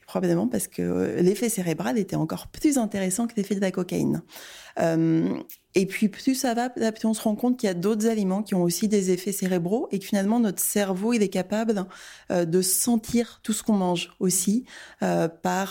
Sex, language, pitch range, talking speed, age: female, French, 175-205 Hz, 205 wpm, 20-39